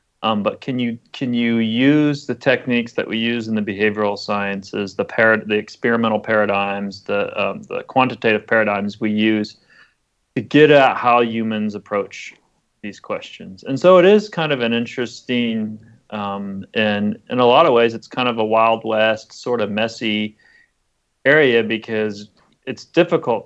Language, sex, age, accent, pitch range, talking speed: English, male, 30-49, American, 105-125 Hz, 165 wpm